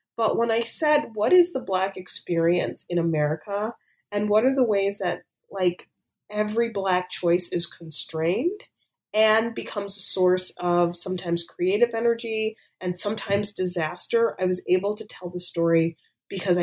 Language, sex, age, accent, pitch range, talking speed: English, female, 30-49, American, 170-205 Hz, 150 wpm